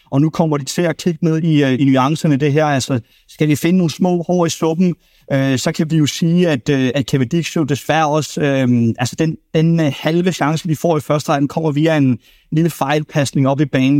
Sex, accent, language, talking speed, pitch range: male, native, Danish, 230 wpm, 130-160 Hz